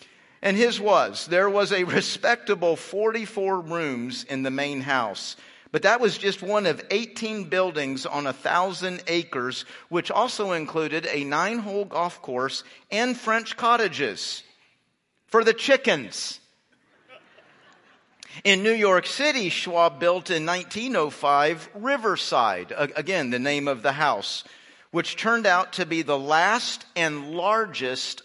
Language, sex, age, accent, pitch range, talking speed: English, male, 50-69, American, 145-205 Hz, 135 wpm